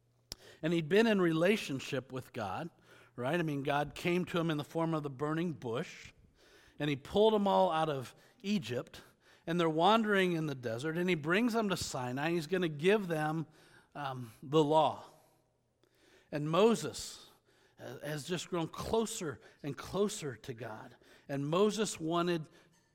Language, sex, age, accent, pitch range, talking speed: English, male, 50-69, American, 130-180 Hz, 165 wpm